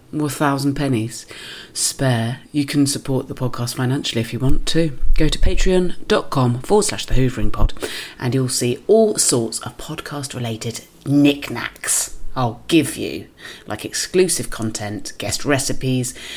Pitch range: 125-160 Hz